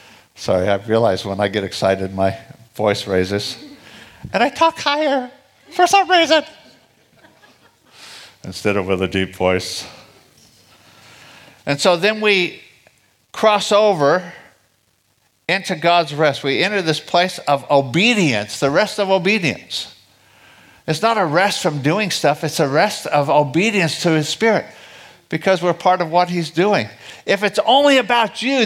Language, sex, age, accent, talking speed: English, male, 60-79, American, 145 wpm